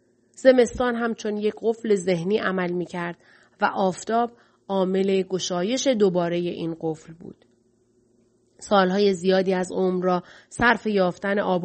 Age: 30-49